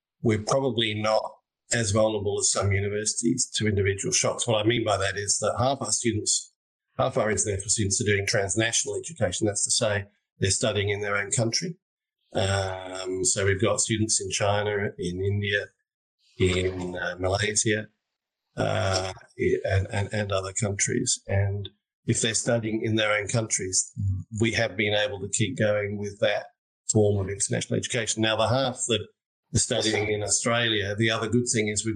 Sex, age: male, 50-69